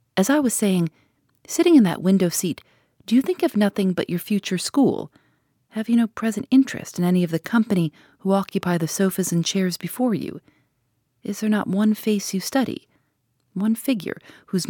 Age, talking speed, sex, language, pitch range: 40-59, 190 wpm, female, English, 155-215 Hz